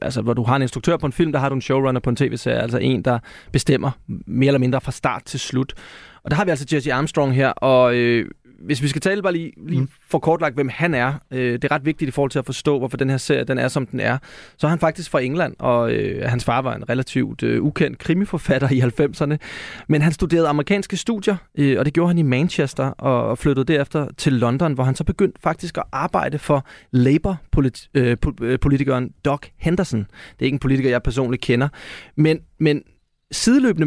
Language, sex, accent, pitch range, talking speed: Danish, male, native, 130-155 Hz, 230 wpm